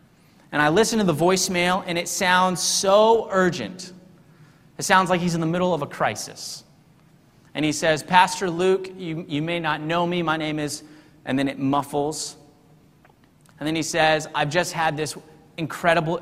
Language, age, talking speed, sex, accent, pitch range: English, 30-49, 180 wpm, male, American, 155-190 Hz